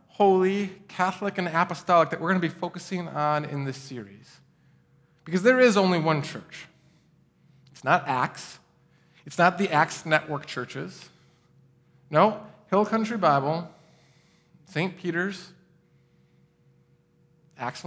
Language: English